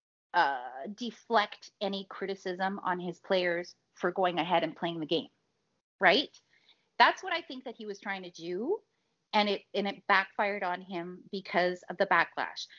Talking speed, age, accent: 170 wpm, 30-49, American